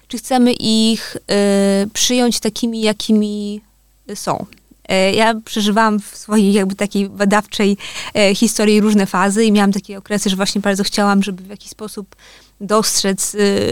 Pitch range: 205-240 Hz